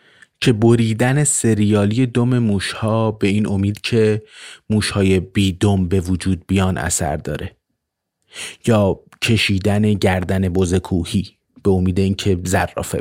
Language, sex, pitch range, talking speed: Persian, male, 95-125 Hz, 115 wpm